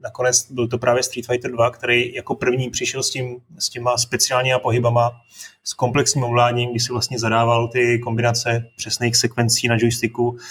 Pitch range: 120-130 Hz